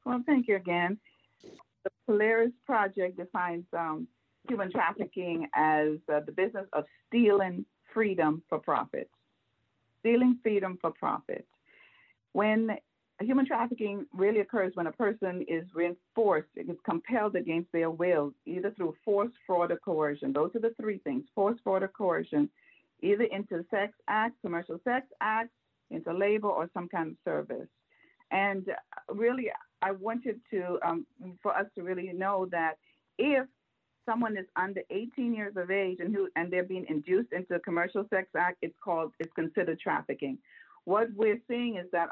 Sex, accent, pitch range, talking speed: female, American, 170-220 Hz, 155 wpm